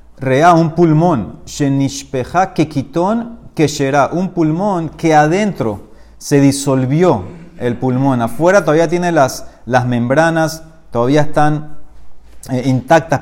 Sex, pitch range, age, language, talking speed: male, 135-180 Hz, 30-49, Spanish, 85 wpm